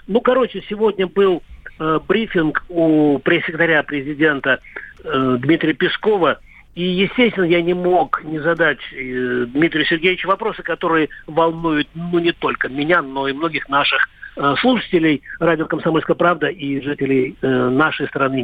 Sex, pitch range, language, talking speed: male, 135-170 Hz, Russian, 140 wpm